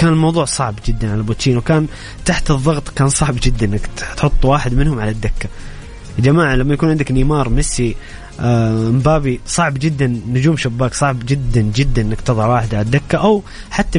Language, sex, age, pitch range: English, male, 20-39, 115-145 Hz